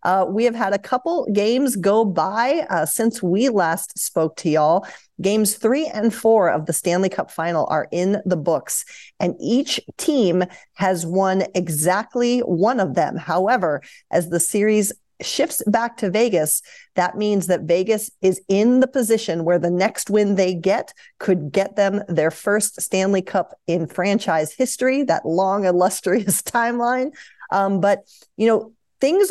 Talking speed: 160 wpm